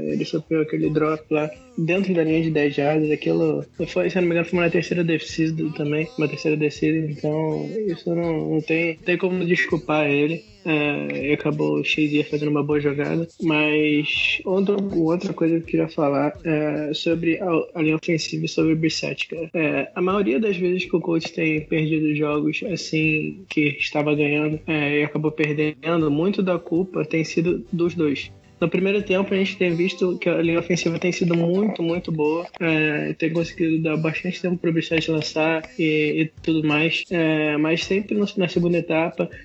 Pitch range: 155-180 Hz